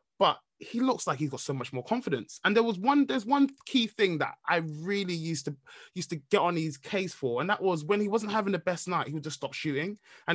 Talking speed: 265 wpm